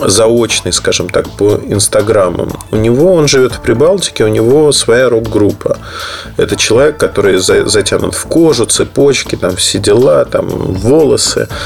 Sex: male